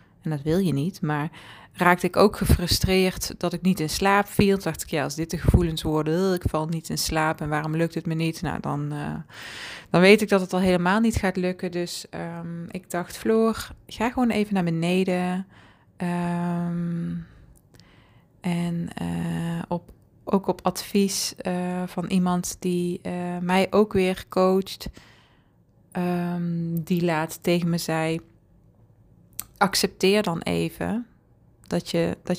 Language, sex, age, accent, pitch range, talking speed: Dutch, female, 20-39, Dutch, 170-190 Hz, 145 wpm